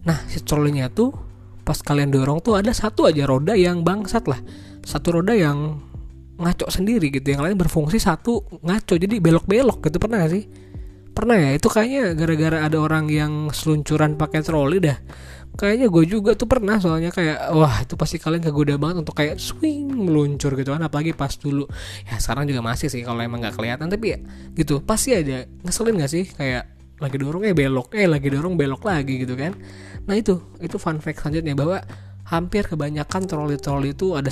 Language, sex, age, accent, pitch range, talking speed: Indonesian, male, 20-39, native, 125-170 Hz, 185 wpm